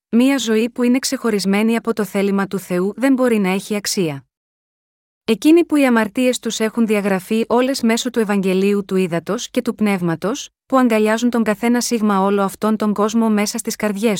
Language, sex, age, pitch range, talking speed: Greek, female, 30-49, 205-245 Hz, 180 wpm